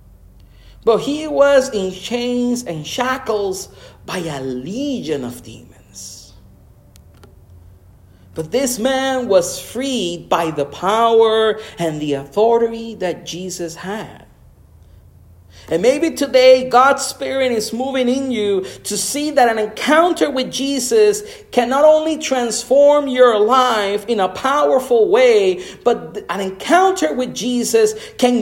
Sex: male